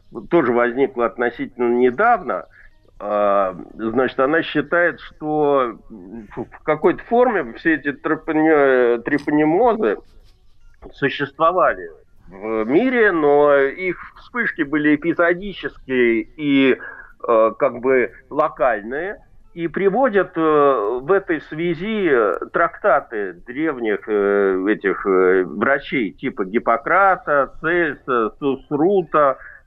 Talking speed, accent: 80 wpm, native